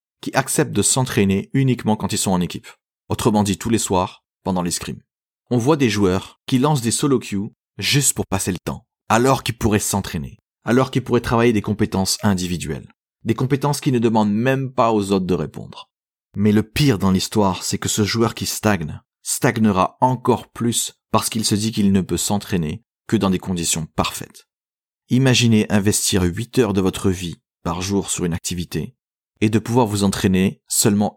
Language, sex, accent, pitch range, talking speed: French, male, French, 95-115 Hz, 190 wpm